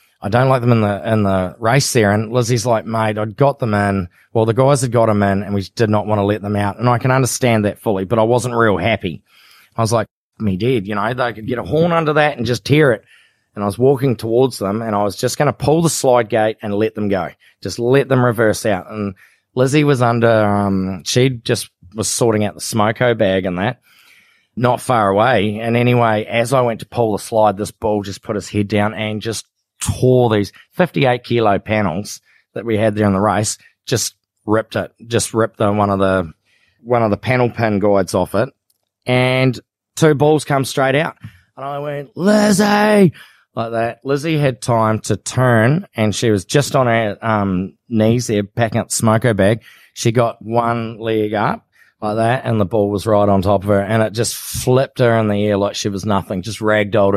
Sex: male